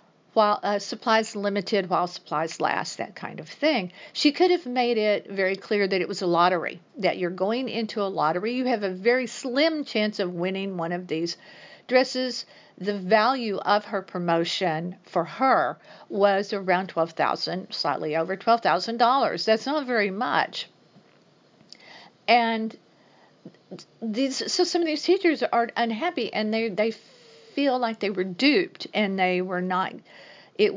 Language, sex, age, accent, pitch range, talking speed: English, female, 50-69, American, 185-235 Hz, 160 wpm